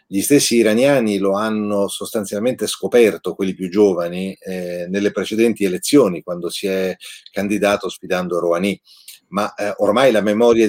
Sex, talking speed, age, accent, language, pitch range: male, 140 wpm, 40-59, native, Italian, 90-105 Hz